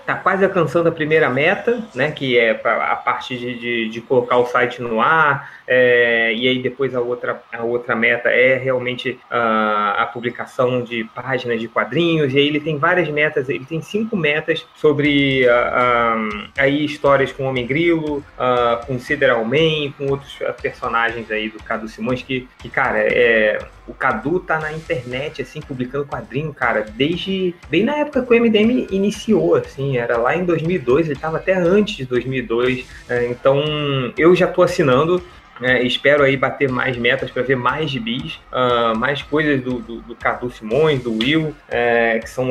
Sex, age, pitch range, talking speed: male, 20-39, 125-160 Hz, 175 wpm